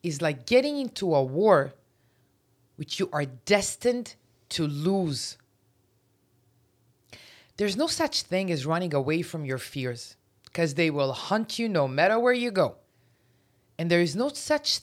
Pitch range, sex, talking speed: 125-195 Hz, female, 150 wpm